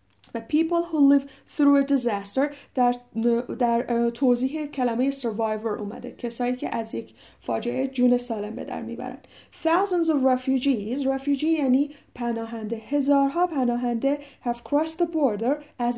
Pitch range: 225-275 Hz